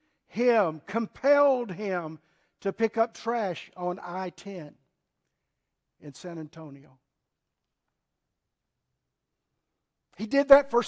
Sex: male